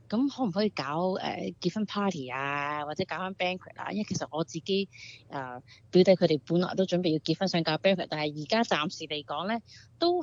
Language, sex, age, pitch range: Chinese, female, 30-49, 155-220 Hz